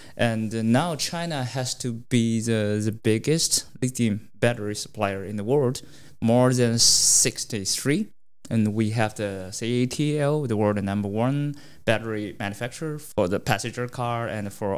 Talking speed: 140 wpm